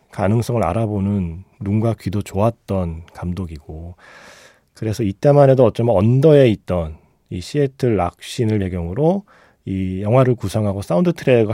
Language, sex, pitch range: Korean, male, 95-135 Hz